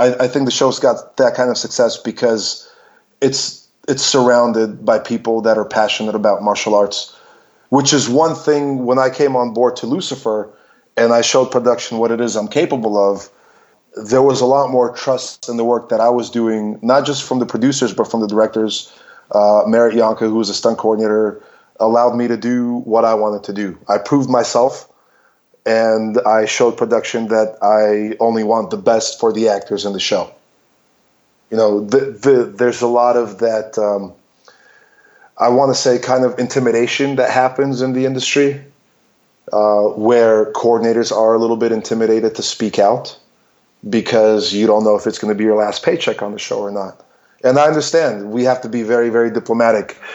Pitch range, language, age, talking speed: 110-125 Hz, English, 20-39, 190 wpm